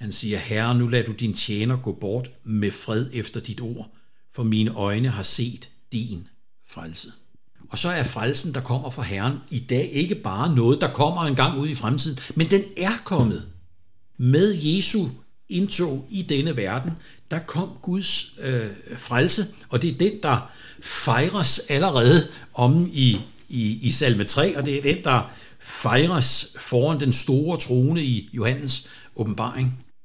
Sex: male